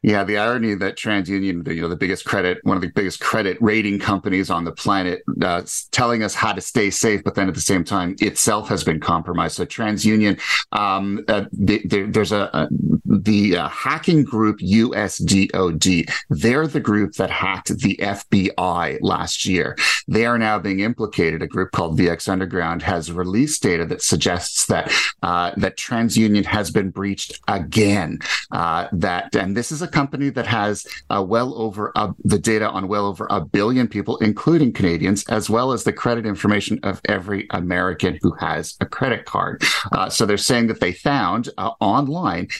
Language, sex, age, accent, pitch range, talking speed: English, male, 40-59, American, 95-110 Hz, 175 wpm